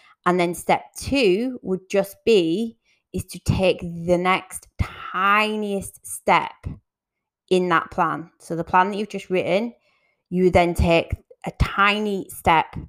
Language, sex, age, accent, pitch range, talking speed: English, female, 20-39, British, 165-190 Hz, 140 wpm